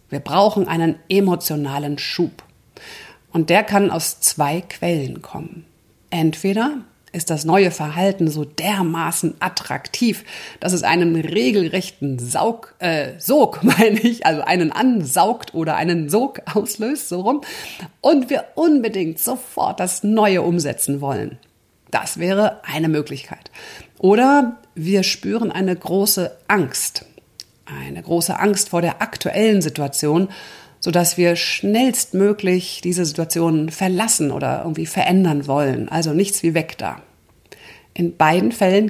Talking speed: 125 wpm